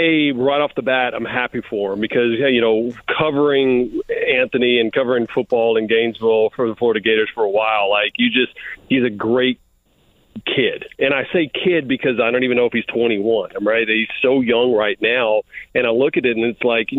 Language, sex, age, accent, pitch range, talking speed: English, male, 40-59, American, 120-165 Hz, 210 wpm